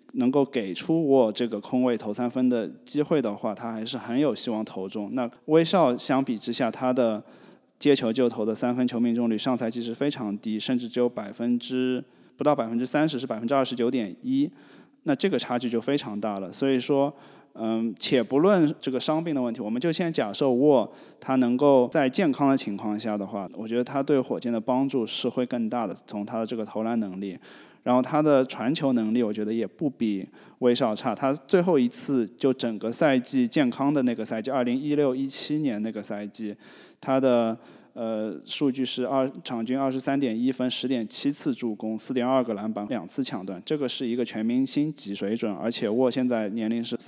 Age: 20-39